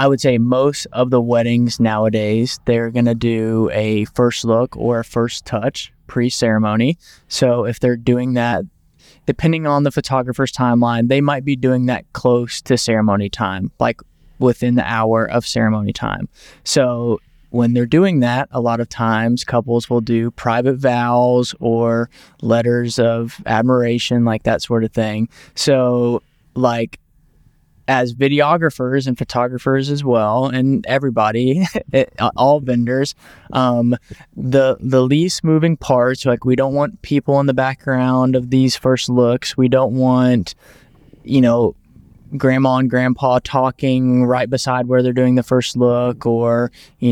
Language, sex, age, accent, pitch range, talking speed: English, male, 20-39, American, 120-135 Hz, 150 wpm